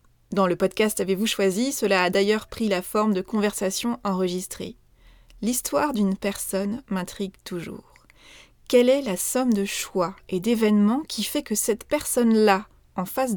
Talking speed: 155 wpm